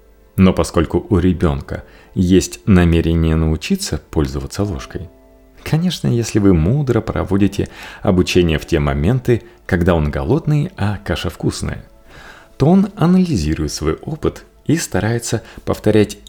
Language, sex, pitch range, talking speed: Russian, male, 80-125 Hz, 120 wpm